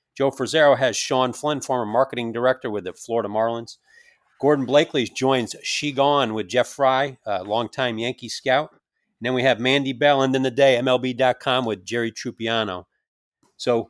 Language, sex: English, male